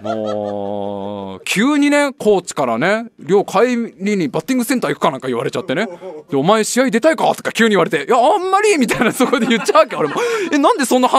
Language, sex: Japanese, male